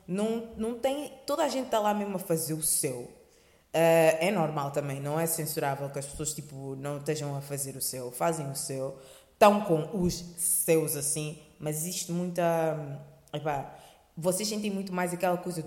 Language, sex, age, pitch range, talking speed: Portuguese, female, 20-39, 155-235 Hz, 185 wpm